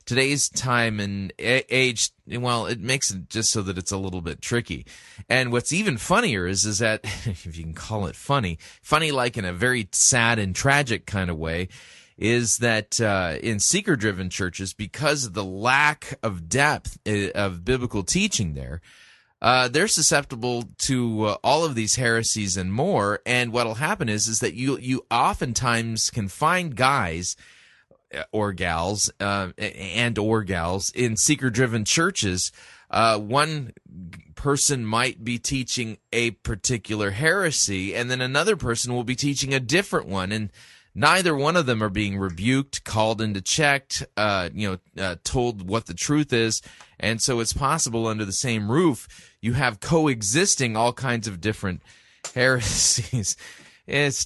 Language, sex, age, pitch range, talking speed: English, male, 30-49, 100-130 Hz, 160 wpm